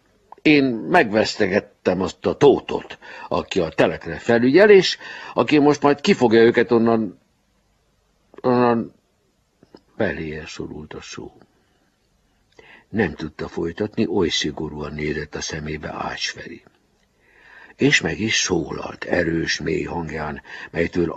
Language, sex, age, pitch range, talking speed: Hungarian, male, 60-79, 85-140 Hz, 110 wpm